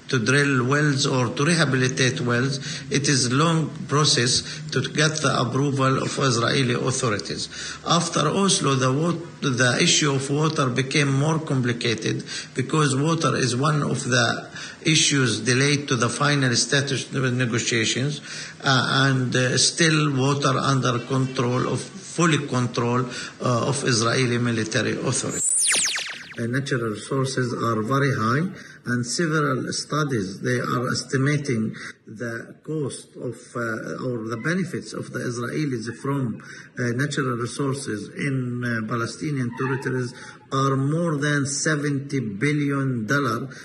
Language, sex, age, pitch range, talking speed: English, male, 50-69, 120-145 Hz, 130 wpm